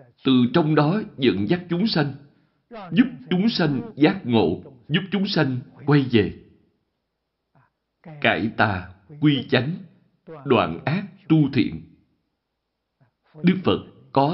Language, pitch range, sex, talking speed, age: Vietnamese, 110-165 Hz, male, 115 wpm, 60-79